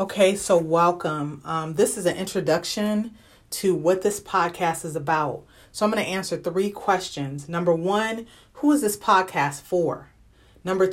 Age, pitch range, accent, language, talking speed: 30-49, 155-210 Hz, American, English, 160 wpm